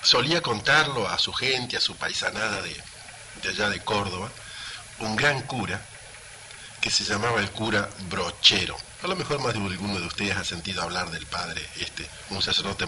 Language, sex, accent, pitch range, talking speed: Spanish, male, Argentinian, 100-130 Hz, 175 wpm